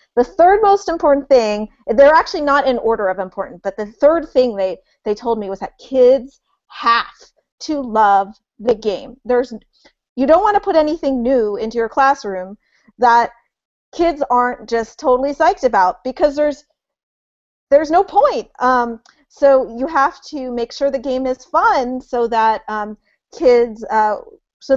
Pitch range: 215-270 Hz